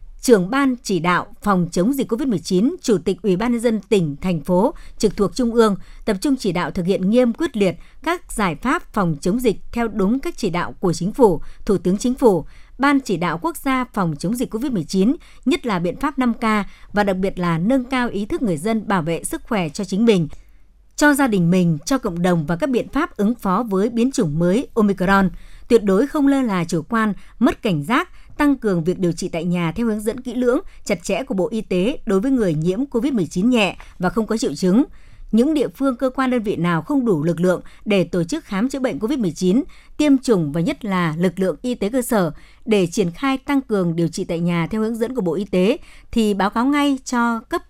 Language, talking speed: Vietnamese, 235 wpm